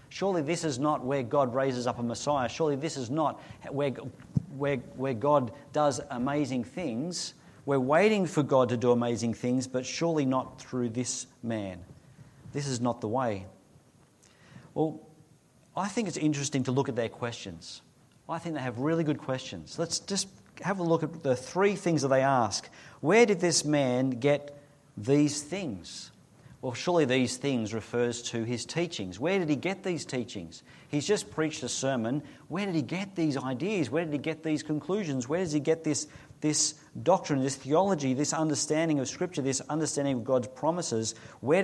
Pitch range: 125-155 Hz